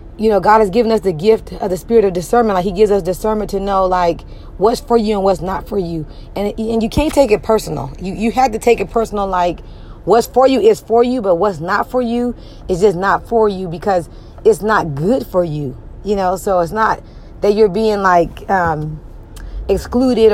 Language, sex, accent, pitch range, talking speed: English, female, American, 185-230 Hz, 225 wpm